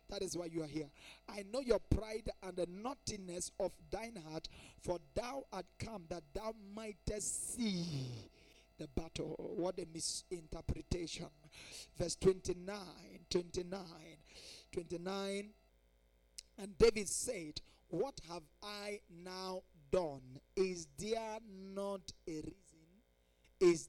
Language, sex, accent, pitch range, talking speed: English, male, Nigerian, 155-220 Hz, 120 wpm